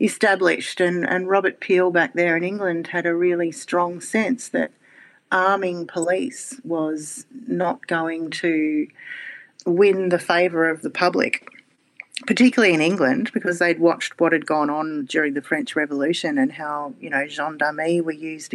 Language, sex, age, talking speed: English, female, 40-59, 155 wpm